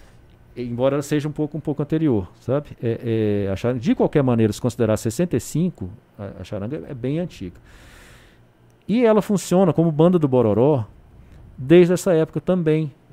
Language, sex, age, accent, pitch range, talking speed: Portuguese, male, 50-69, Brazilian, 115-155 Hz, 165 wpm